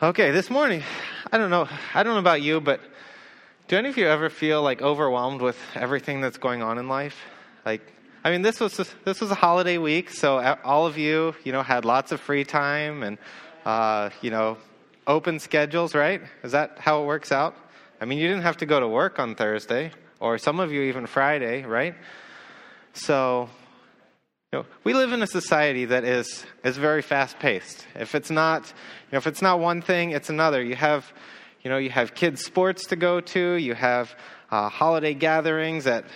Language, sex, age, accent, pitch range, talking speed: English, male, 20-39, American, 125-160 Hz, 205 wpm